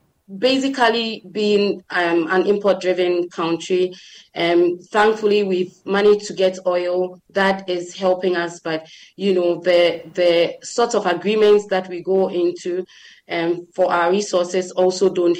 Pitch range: 180-210 Hz